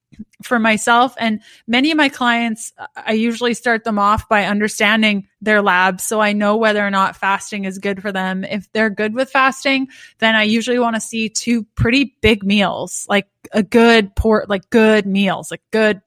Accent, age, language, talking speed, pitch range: American, 20-39, English, 190 wpm, 200-230 Hz